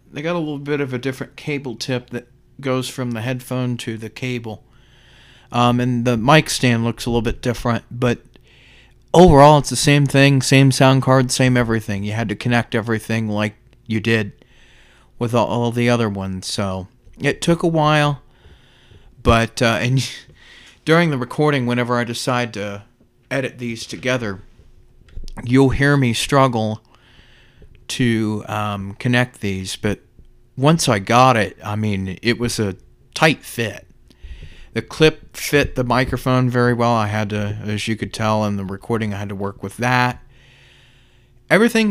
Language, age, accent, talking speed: English, 30-49, American, 165 wpm